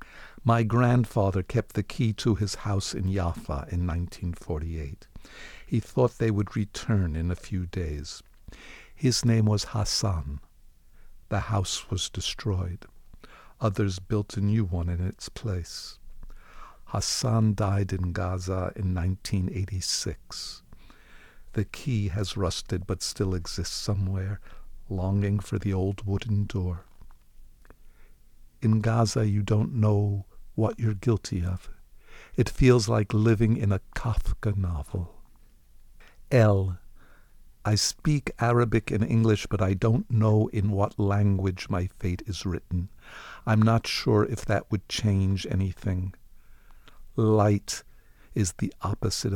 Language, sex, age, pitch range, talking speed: English, male, 60-79, 95-110 Hz, 125 wpm